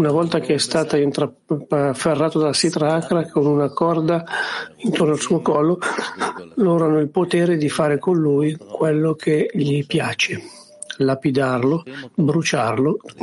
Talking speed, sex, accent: 135 wpm, male, native